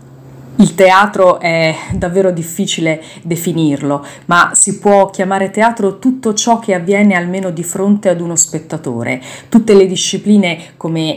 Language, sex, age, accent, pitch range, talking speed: Italian, female, 30-49, native, 160-190 Hz, 135 wpm